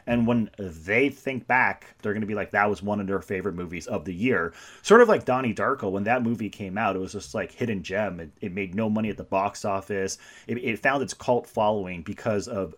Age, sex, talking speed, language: 30-49, male, 250 wpm, English